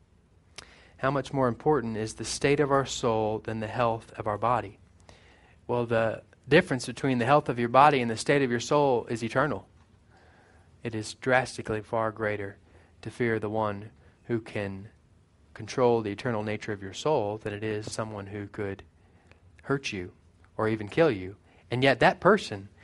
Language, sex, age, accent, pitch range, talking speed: English, male, 30-49, American, 105-135 Hz, 175 wpm